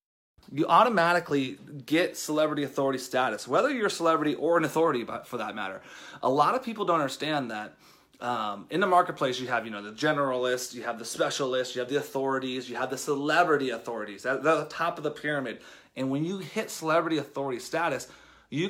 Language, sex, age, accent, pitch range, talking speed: English, male, 30-49, American, 130-160 Hz, 195 wpm